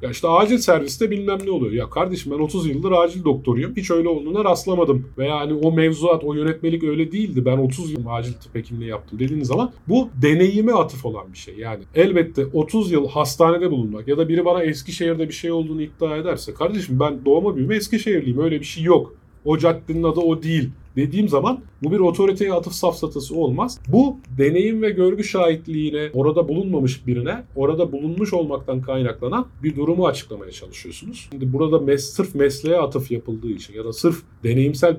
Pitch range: 130-170 Hz